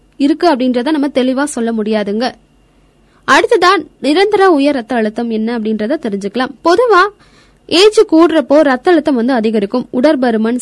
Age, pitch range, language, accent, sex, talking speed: 20-39, 235-315 Hz, Tamil, native, female, 120 wpm